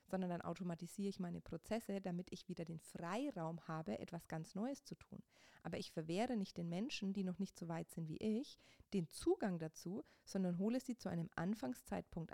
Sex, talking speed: female, 195 wpm